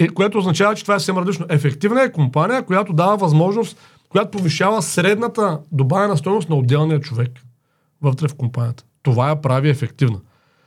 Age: 40-59